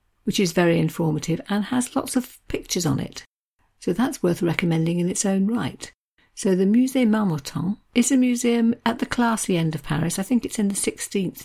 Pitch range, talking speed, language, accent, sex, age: 160-205 Hz, 200 wpm, English, British, female, 50-69